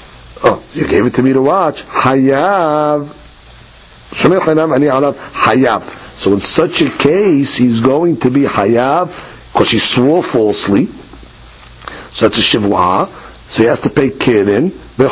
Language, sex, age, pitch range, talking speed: English, male, 60-79, 140-215 Hz, 135 wpm